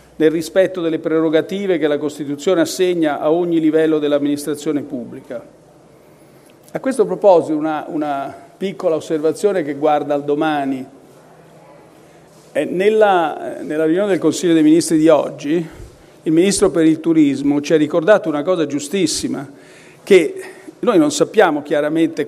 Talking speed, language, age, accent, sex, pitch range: 135 wpm, Italian, 50-69, native, male, 155-195 Hz